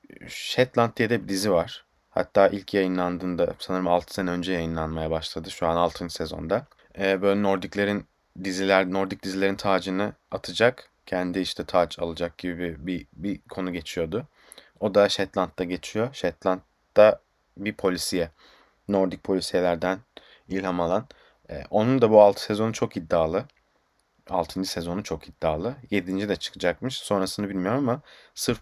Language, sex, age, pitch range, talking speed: Turkish, male, 30-49, 90-100 Hz, 135 wpm